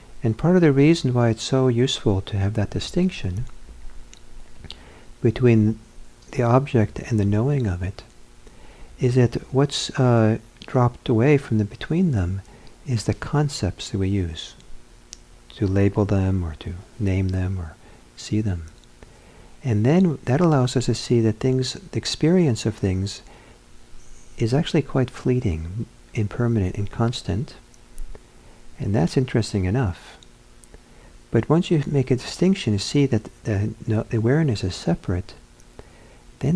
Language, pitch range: English, 85-125 Hz